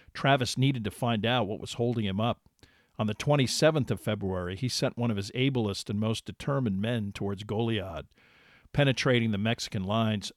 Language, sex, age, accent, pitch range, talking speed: English, male, 50-69, American, 105-125 Hz, 180 wpm